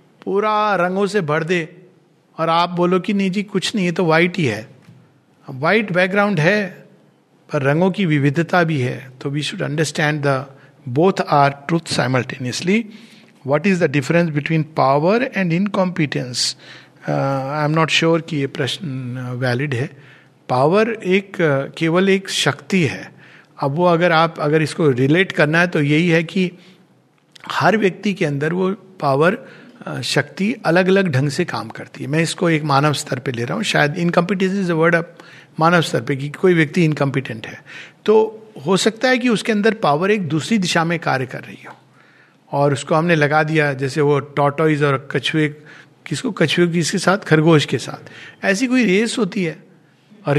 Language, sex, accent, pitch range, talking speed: Hindi, male, native, 145-195 Hz, 175 wpm